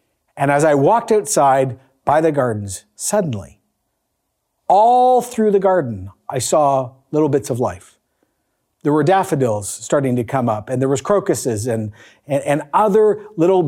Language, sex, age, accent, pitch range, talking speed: English, male, 40-59, American, 135-195 Hz, 155 wpm